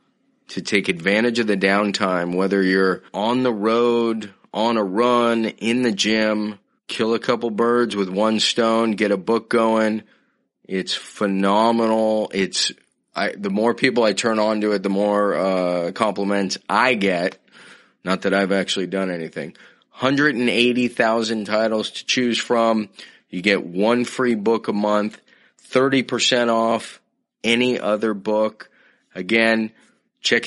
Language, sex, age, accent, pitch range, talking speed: English, male, 30-49, American, 95-120 Hz, 140 wpm